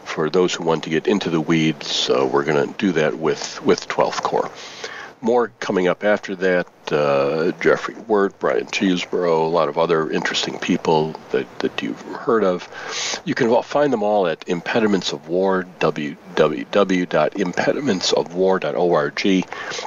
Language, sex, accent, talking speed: English, male, American, 145 wpm